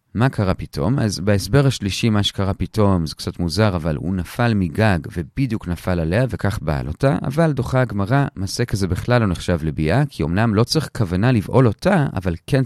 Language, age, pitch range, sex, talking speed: Hebrew, 30-49, 95-140 Hz, male, 190 wpm